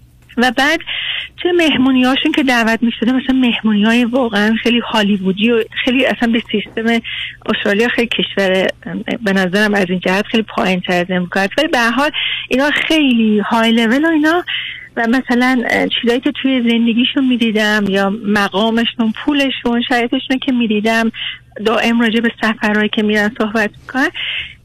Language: Persian